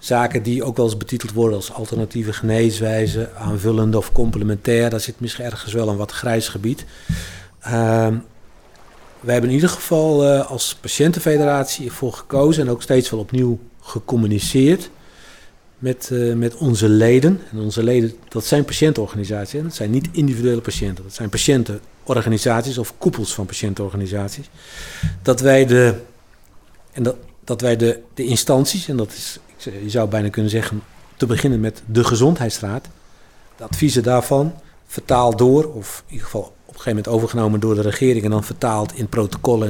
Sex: male